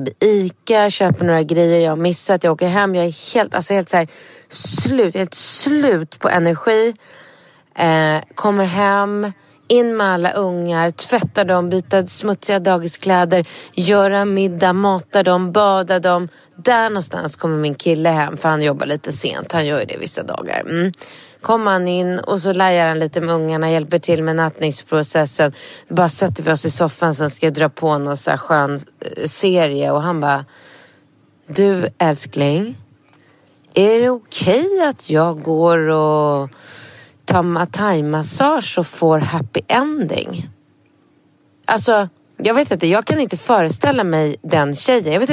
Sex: female